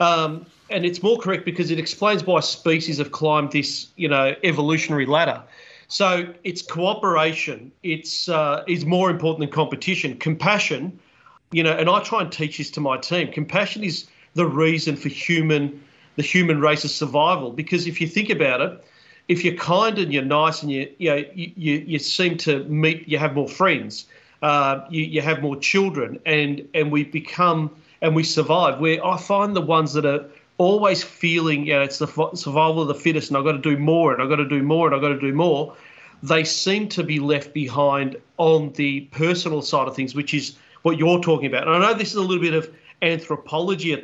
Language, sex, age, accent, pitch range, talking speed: English, male, 40-59, Australian, 145-175 Hz, 205 wpm